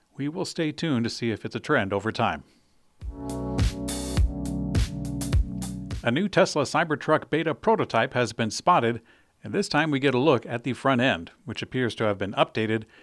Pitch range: 110-140 Hz